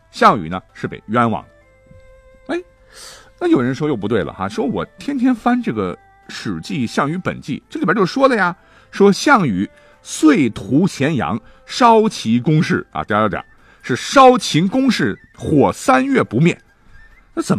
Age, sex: 50-69, male